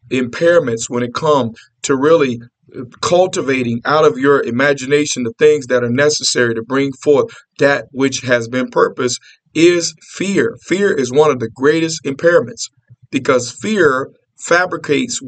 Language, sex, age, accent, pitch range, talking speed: English, male, 50-69, American, 125-160 Hz, 140 wpm